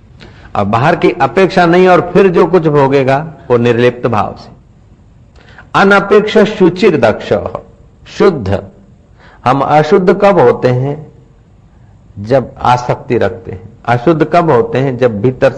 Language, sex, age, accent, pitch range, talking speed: Hindi, male, 60-79, native, 120-175 Hz, 120 wpm